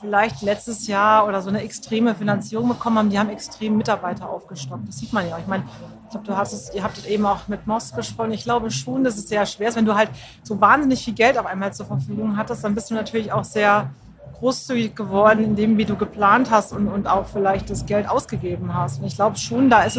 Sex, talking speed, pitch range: female, 250 wpm, 195-230 Hz